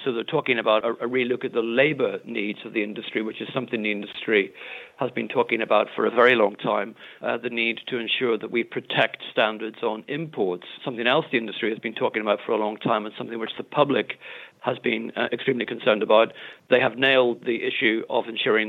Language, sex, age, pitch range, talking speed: English, male, 50-69, 110-130 Hz, 220 wpm